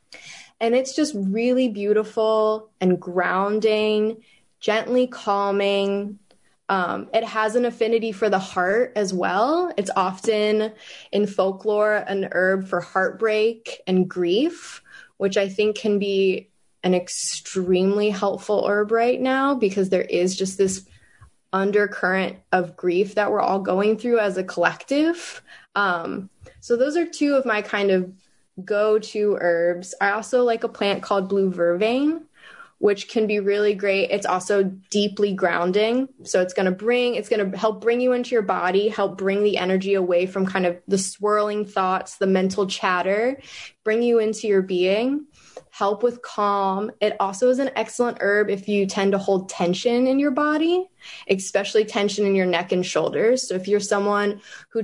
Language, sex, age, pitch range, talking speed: English, female, 20-39, 190-225 Hz, 160 wpm